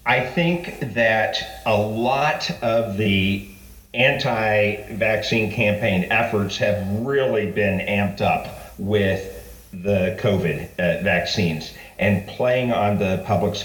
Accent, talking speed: American, 110 wpm